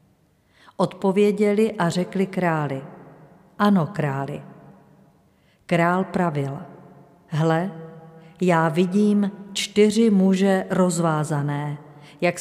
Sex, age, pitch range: female, 50-69, 160-195 Hz